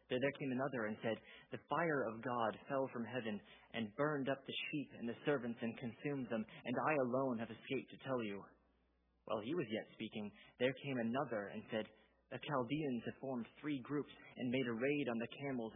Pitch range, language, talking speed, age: 105-125 Hz, English, 205 wpm, 30-49